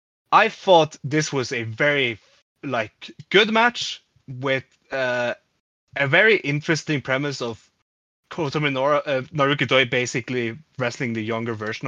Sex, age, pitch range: male, 20-39, 115-150 Hz